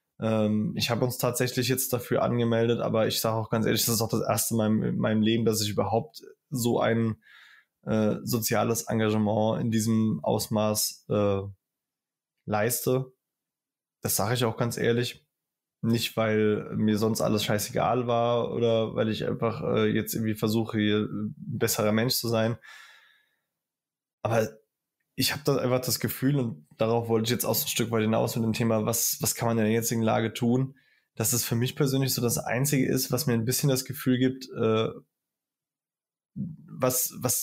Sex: male